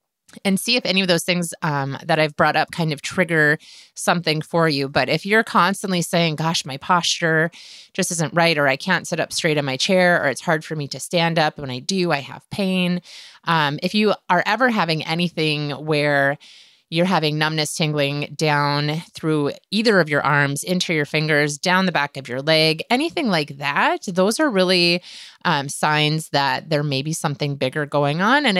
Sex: female